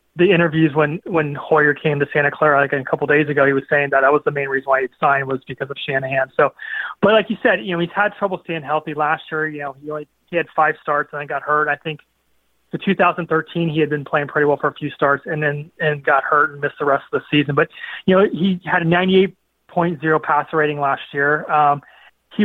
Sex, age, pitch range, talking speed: male, 30-49, 145-170 Hz, 260 wpm